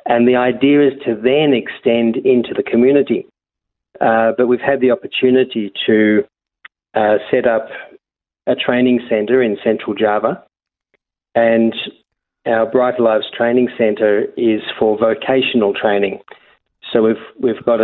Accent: Australian